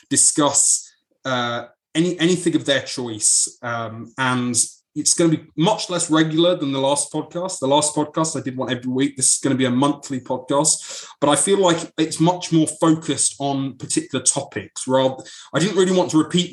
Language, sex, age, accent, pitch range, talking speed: English, male, 20-39, British, 125-155 Hz, 195 wpm